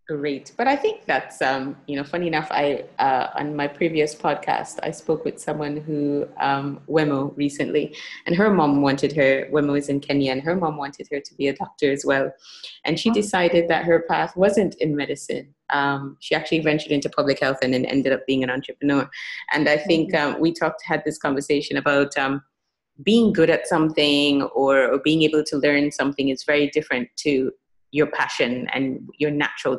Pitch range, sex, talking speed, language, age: 140-160 Hz, female, 195 wpm, English, 30-49